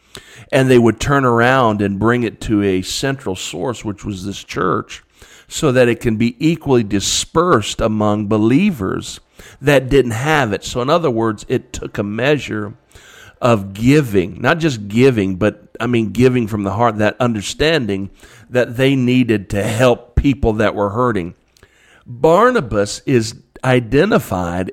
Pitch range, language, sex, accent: 105-130 Hz, English, male, American